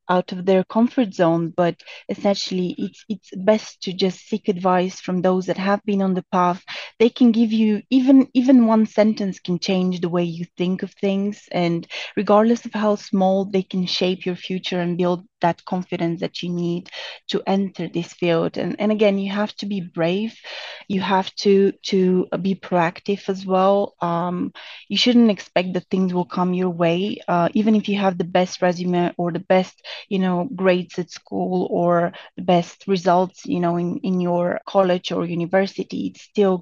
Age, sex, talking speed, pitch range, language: 20-39, female, 190 wpm, 175-205 Hz, English